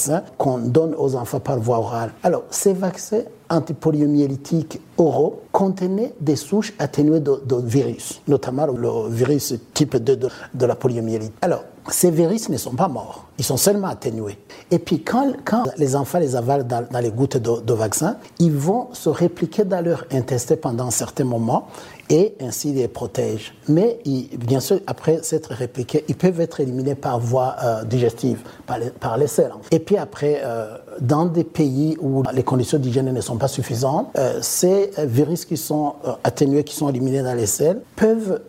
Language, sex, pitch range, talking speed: French, male, 125-170 Hz, 180 wpm